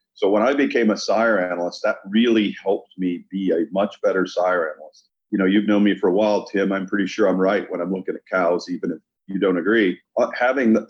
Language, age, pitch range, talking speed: English, 40-59, 100-115 Hz, 230 wpm